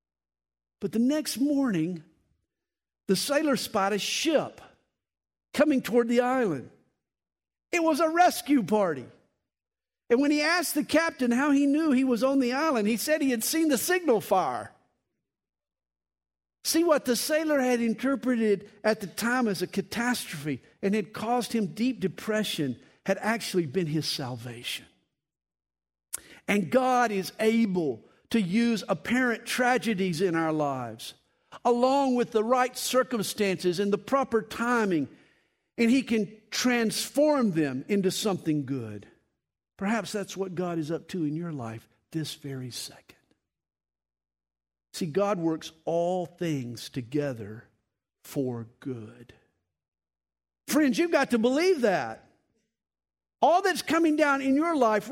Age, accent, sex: 50-69, American, male